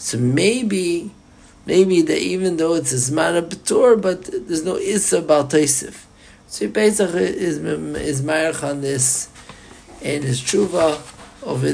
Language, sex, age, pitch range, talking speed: English, male, 50-69, 130-170 Hz, 130 wpm